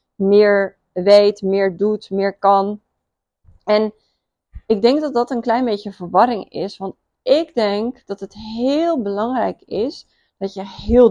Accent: Dutch